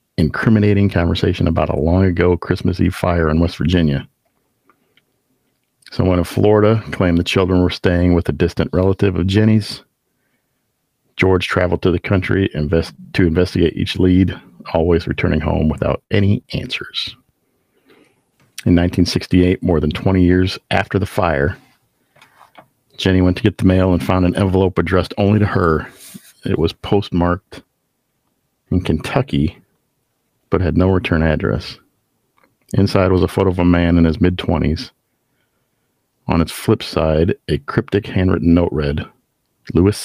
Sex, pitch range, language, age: male, 85-100 Hz, English, 50-69